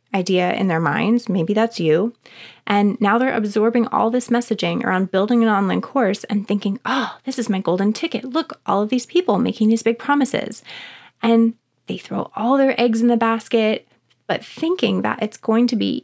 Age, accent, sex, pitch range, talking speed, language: 20-39, American, female, 195-240 Hz, 195 wpm, English